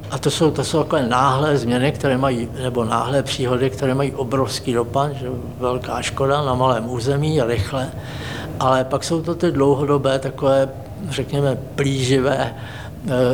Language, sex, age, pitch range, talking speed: Czech, male, 60-79, 120-135 Hz, 160 wpm